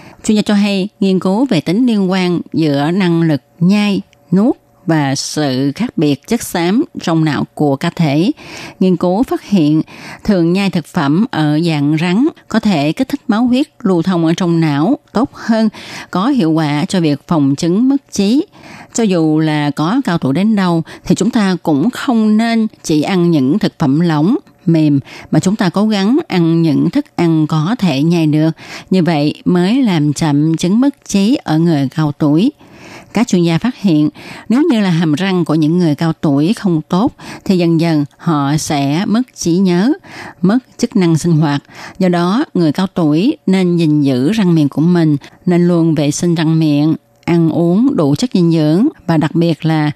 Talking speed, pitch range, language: 195 wpm, 155-205 Hz, Vietnamese